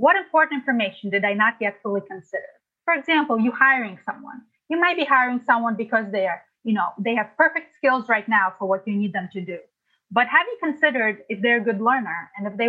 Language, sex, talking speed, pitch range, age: English, female, 230 wpm, 210-275 Hz, 20-39